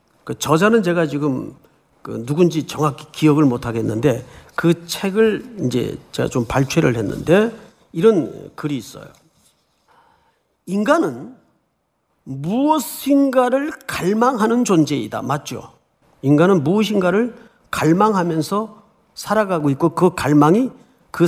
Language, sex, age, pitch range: Korean, male, 40-59, 170-260 Hz